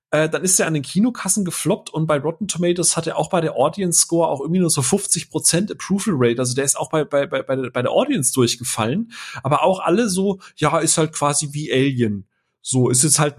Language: German